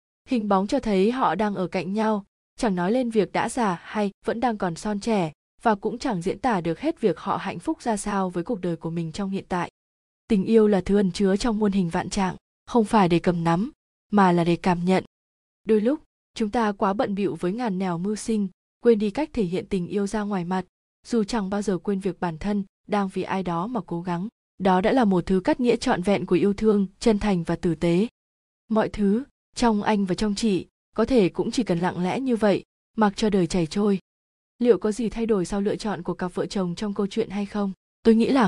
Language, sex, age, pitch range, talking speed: Vietnamese, female, 20-39, 185-225 Hz, 245 wpm